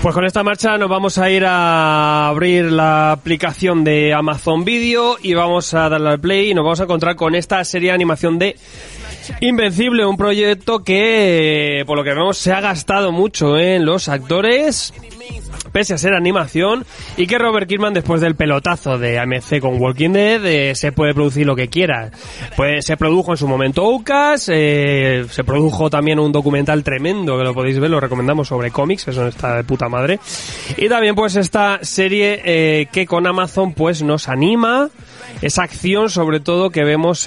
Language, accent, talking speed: Spanish, Spanish, 185 wpm